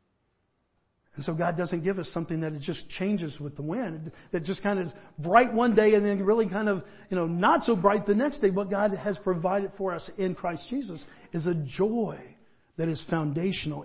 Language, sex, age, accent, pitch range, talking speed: English, male, 50-69, American, 160-200 Hz, 215 wpm